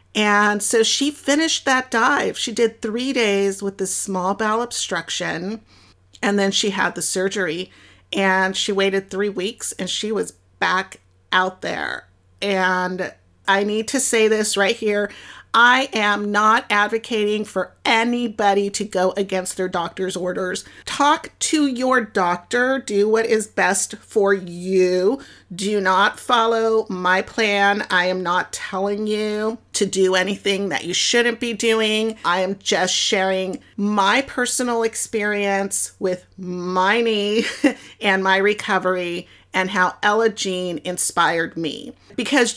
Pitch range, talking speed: 180-220 Hz, 140 wpm